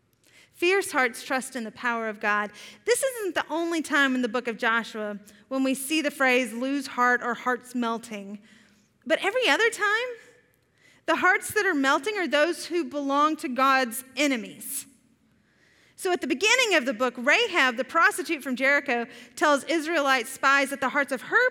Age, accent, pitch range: 30-49, American, 250-330 Hz